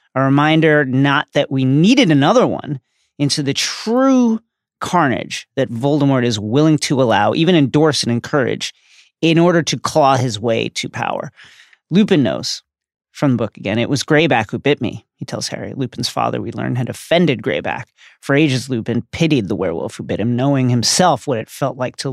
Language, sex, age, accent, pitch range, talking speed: English, male, 30-49, American, 115-150 Hz, 185 wpm